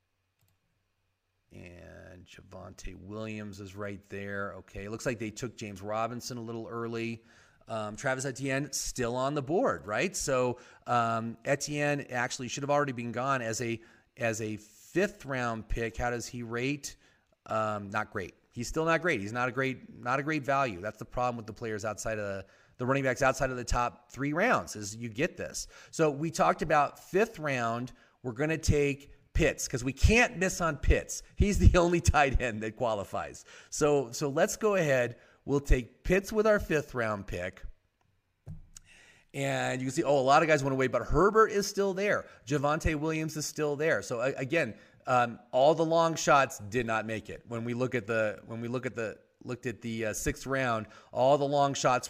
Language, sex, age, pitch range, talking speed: English, male, 30-49, 110-145 Hz, 195 wpm